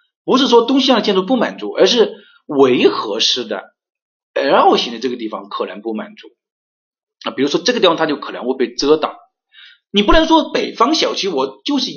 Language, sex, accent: Chinese, male, native